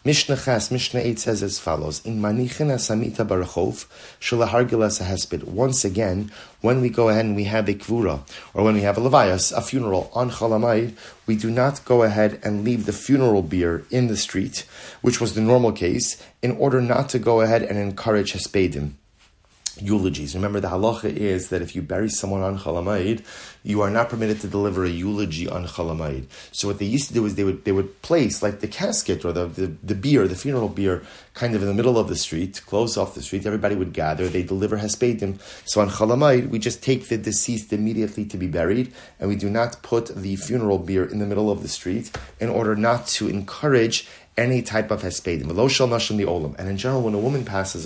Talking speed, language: 200 wpm, English